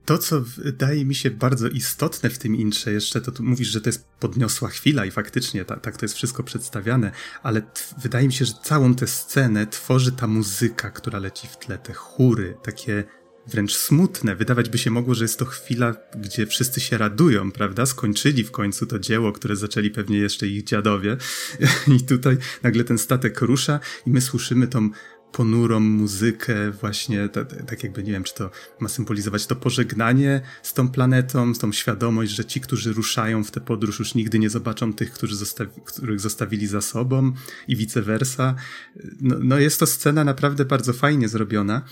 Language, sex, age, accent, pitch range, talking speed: Polish, male, 30-49, native, 110-135 Hz, 190 wpm